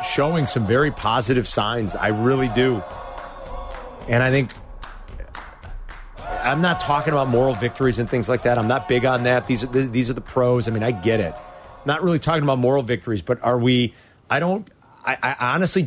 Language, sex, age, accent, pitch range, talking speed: English, male, 40-59, American, 120-150 Hz, 190 wpm